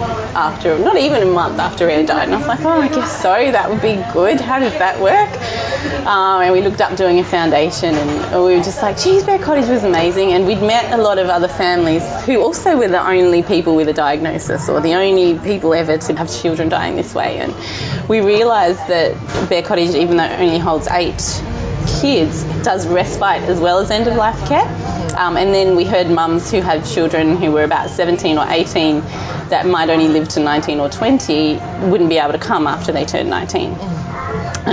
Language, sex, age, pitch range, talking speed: English, female, 20-39, 160-190 Hz, 215 wpm